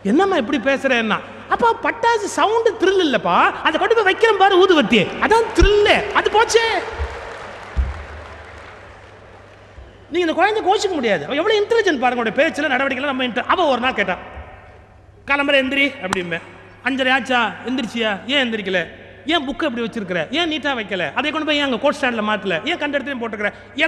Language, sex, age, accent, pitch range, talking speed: Tamil, male, 30-49, native, 205-300 Hz, 115 wpm